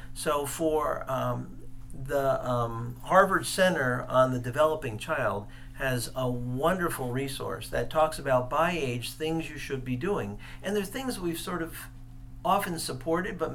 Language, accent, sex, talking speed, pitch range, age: English, American, male, 150 wpm, 125-160 Hz, 50-69